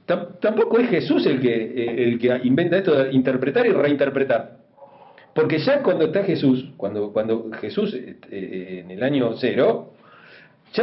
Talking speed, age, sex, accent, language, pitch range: 155 wpm, 40-59, male, Argentinian, Spanish, 140-195 Hz